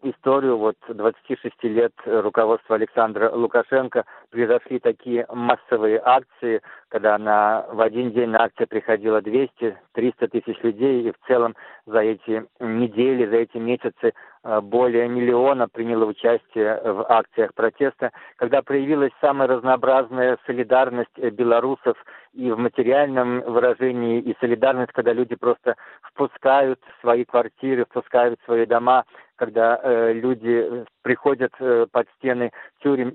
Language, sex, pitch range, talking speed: Russian, male, 115-130 Hz, 120 wpm